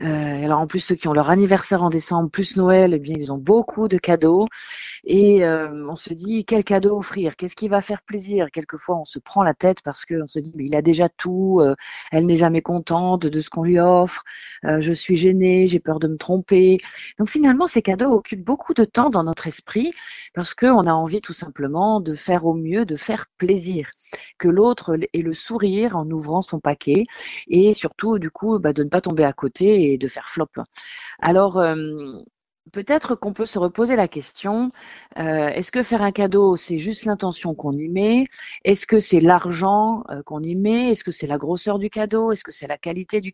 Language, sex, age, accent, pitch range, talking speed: French, female, 40-59, French, 160-205 Hz, 215 wpm